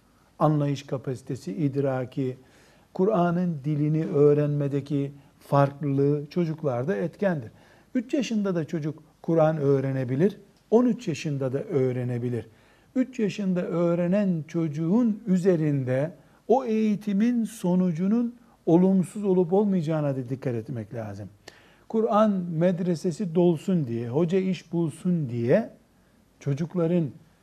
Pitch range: 140-185 Hz